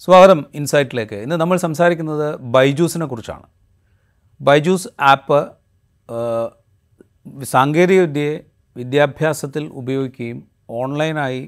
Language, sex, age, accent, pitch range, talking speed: Malayalam, male, 30-49, native, 110-145 Hz, 75 wpm